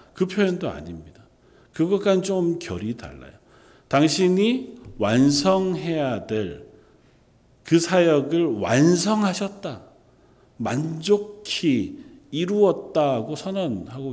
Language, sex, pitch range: Korean, male, 115-185 Hz